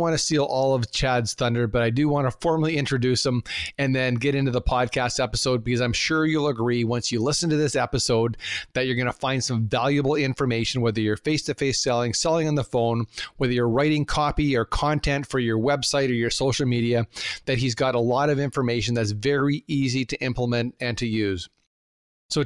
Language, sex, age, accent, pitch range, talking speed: English, male, 40-59, American, 125-150 Hz, 210 wpm